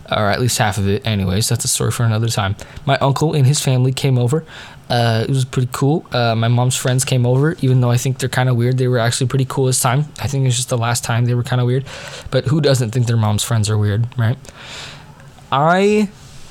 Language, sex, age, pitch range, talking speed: English, male, 20-39, 115-135 Hz, 255 wpm